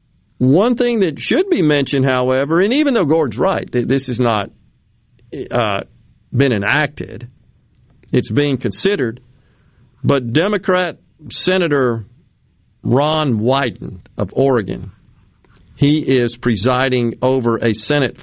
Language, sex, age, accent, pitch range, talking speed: English, male, 50-69, American, 120-180 Hz, 110 wpm